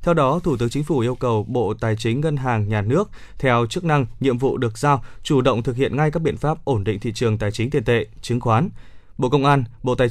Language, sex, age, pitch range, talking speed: Vietnamese, male, 20-39, 120-145 Hz, 265 wpm